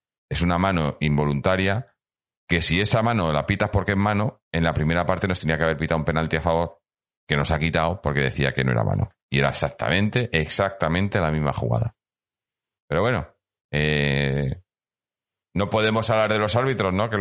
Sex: male